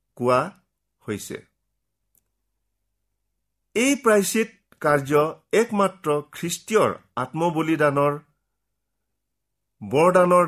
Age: 50-69